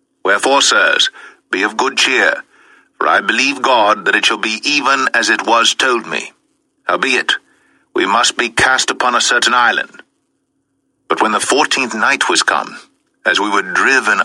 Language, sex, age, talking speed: English, male, 60-79, 170 wpm